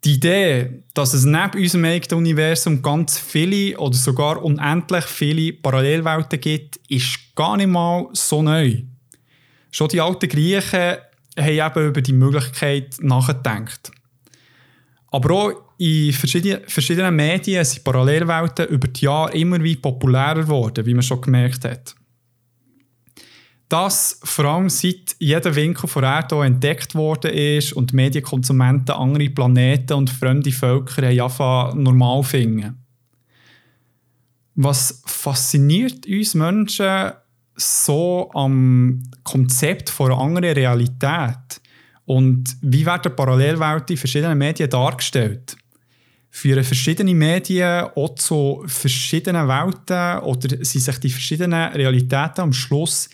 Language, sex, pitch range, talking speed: German, male, 130-160 Hz, 120 wpm